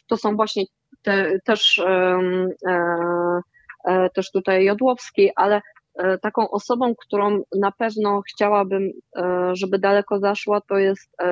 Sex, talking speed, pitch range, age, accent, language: female, 95 wpm, 185-215 Hz, 20-39, native, Polish